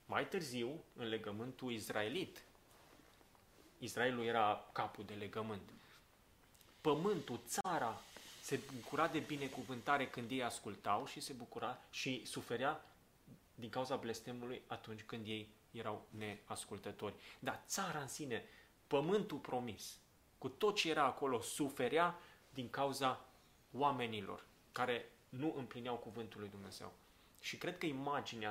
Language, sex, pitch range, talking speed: Romanian, male, 110-145 Hz, 120 wpm